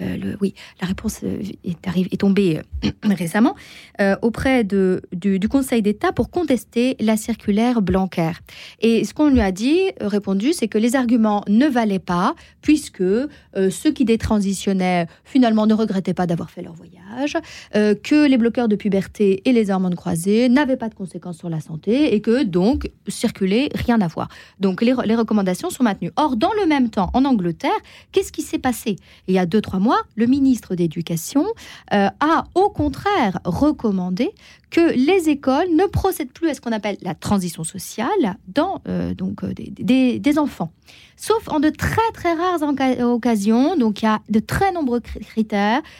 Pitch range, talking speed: 195-275 Hz, 185 wpm